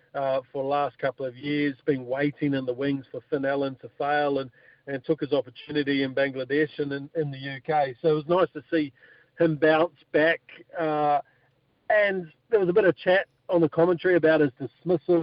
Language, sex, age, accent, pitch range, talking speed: English, male, 50-69, Australian, 140-160 Hz, 205 wpm